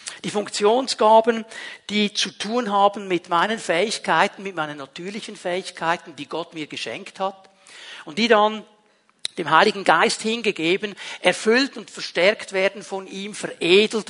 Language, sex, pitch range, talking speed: German, male, 180-220 Hz, 135 wpm